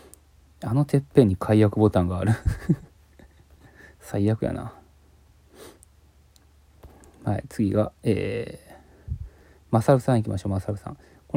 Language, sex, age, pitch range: Japanese, male, 20-39, 85-115 Hz